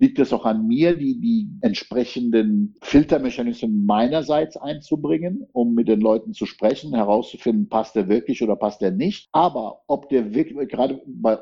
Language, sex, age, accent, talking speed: German, male, 60-79, German, 165 wpm